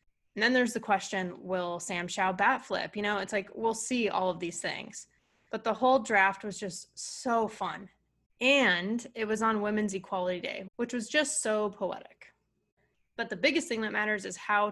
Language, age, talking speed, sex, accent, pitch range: English, 20-39, 195 wpm, female, American, 185-220 Hz